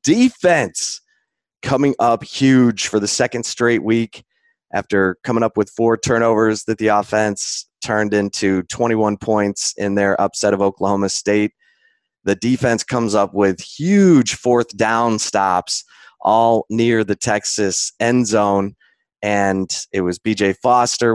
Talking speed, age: 135 wpm, 20-39